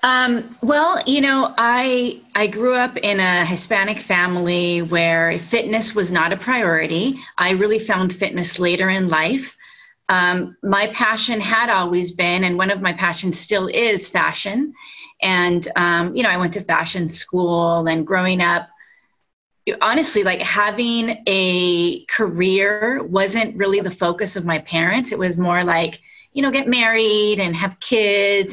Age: 30-49